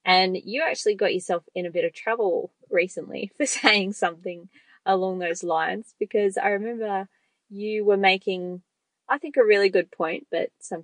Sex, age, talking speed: female, 20-39, 170 wpm